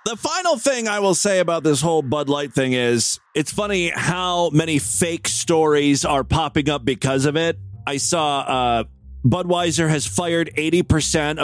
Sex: male